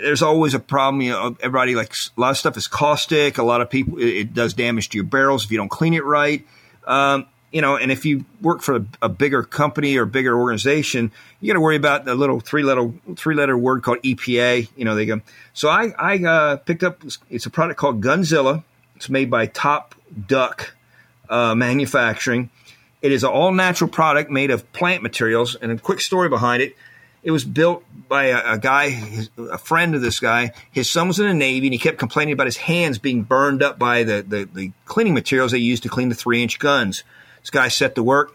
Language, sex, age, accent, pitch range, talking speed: English, male, 40-59, American, 120-150 Hz, 220 wpm